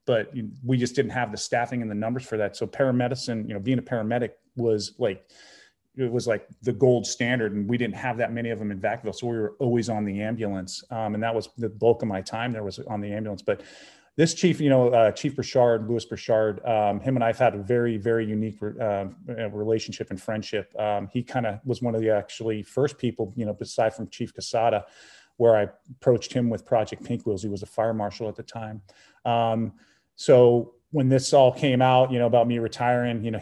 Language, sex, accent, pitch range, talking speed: English, male, American, 110-125 Hz, 230 wpm